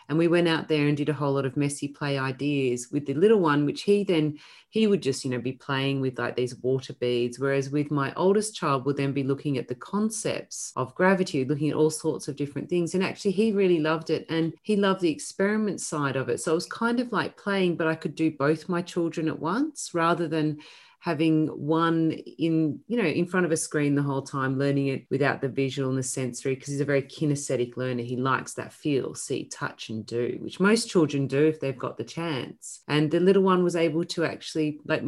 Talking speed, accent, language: 240 wpm, Australian, English